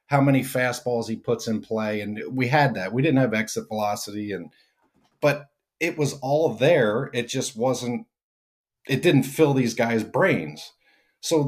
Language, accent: English, American